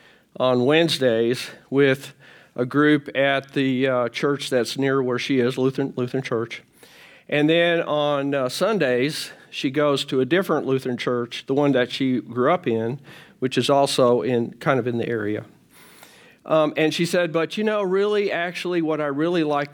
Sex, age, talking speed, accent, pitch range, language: male, 50-69, 175 wpm, American, 130-160 Hz, English